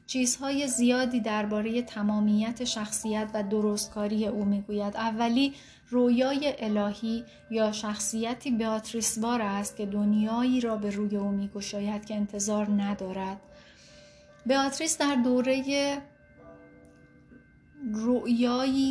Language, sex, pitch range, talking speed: Persian, female, 210-245 Hz, 95 wpm